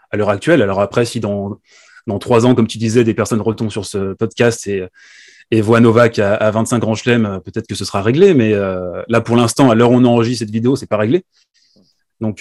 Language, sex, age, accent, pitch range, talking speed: French, male, 20-39, French, 105-125 Hz, 235 wpm